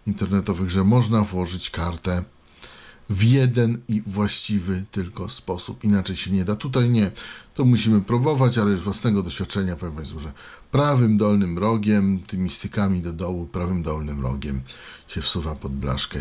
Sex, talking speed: male, 150 wpm